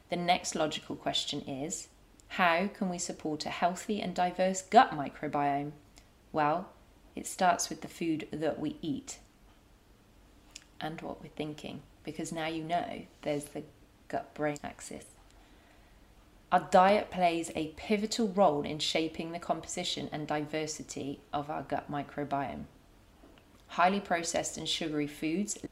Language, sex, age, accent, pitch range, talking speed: English, female, 30-49, British, 150-185 Hz, 135 wpm